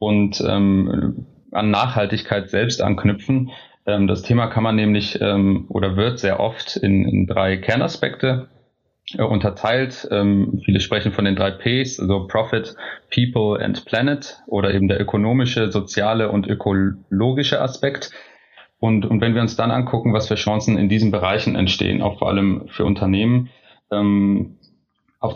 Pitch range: 100-110 Hz